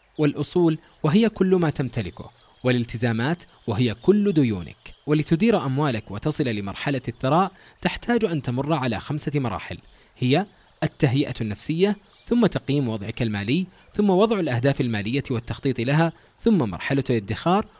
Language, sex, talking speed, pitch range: English, male, 120 wpm, 120-165 Hz